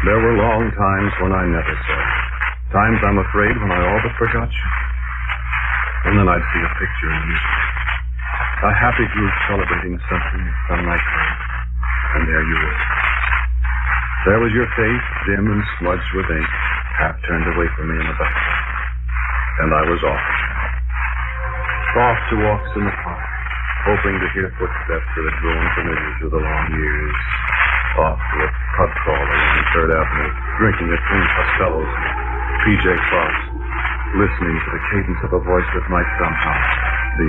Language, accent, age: English, American, 60-79